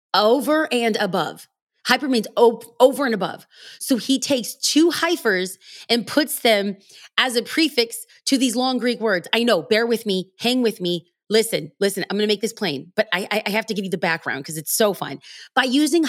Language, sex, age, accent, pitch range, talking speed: English, female, 30-49, American, 190-260 Hz, 210 wpm